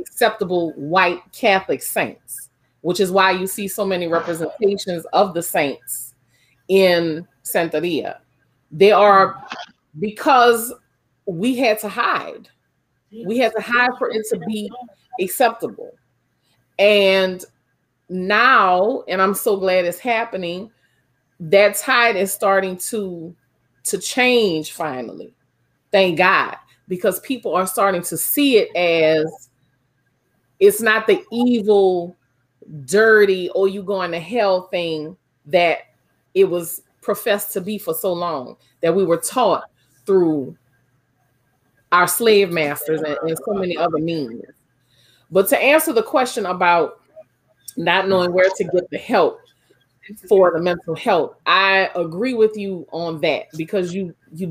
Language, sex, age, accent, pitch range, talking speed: English, female, 30-49, American, 165-220 Hz, 130 wpm